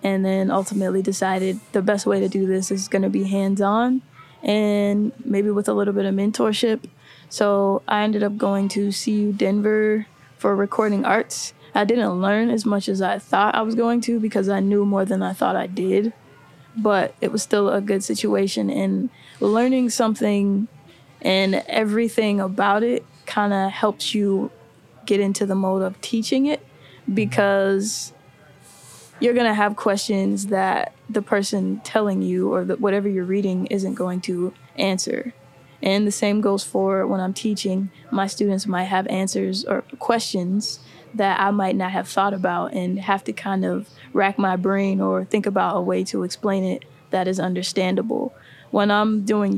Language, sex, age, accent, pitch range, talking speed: English, female, 10-29, American, 190-215 Hz, 175 wpm